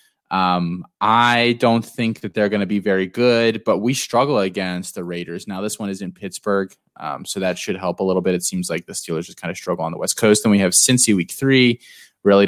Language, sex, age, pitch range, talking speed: English, male, 20-39, 95-120 Hz, 245 wpm